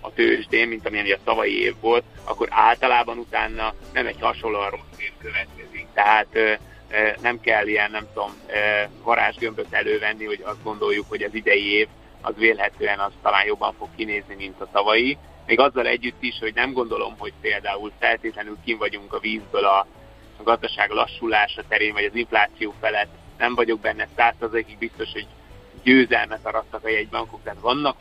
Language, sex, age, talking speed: Hungarian, male, 30-49, 175 wpm